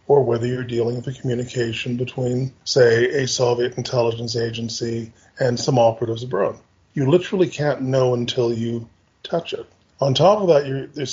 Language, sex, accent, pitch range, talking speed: English, male, American, 115-135 Hz, 160 wpm